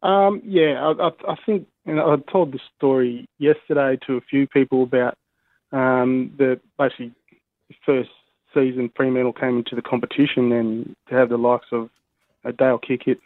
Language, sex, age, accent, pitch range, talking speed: English, male, 20-39, Australian, 120-135 Hz, 165 wpm